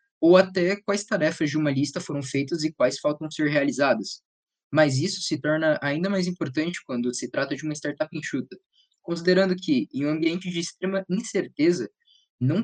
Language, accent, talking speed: Portuguese, Brazilian, 175 wpm